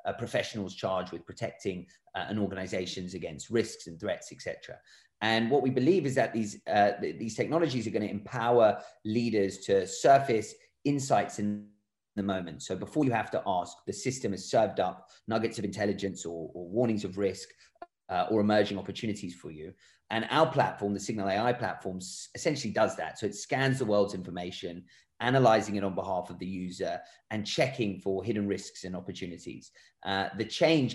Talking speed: 180 wpm